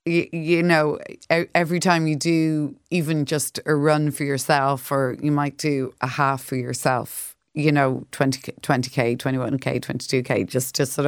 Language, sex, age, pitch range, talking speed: English, female, 30-49, 135-160 Hz, 155 wpm